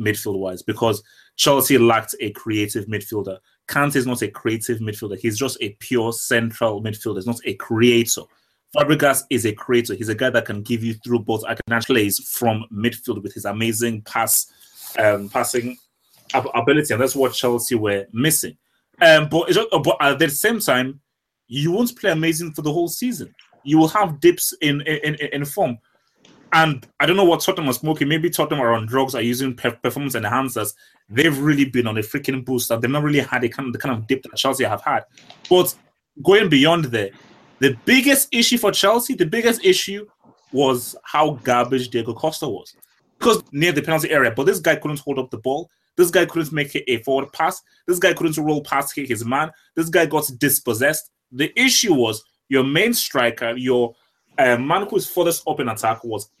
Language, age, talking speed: English, 30-49, 195 wpm